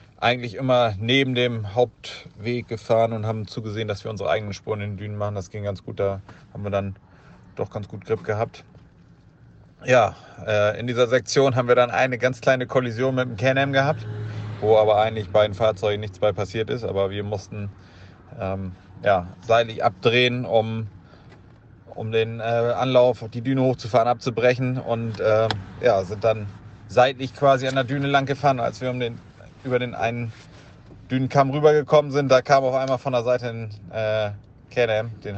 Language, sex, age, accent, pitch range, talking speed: German, male, 30-49, German, 100-125 Hz, 180 wpm